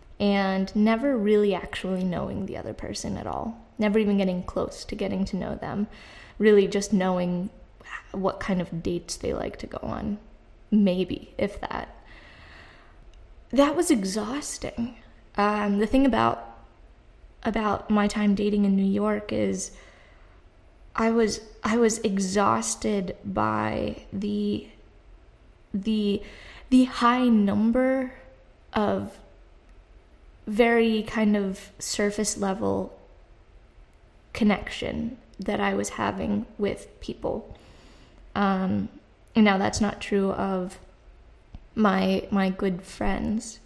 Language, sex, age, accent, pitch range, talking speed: English, female, 20-39, American, 180-215 Hz, 115 wpm